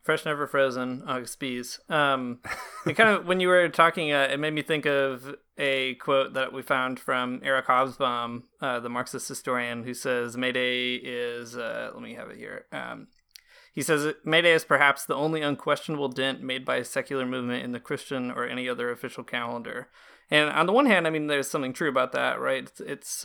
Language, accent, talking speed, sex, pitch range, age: English, American, 205 wpm, male, 125-150 Hz, 30-49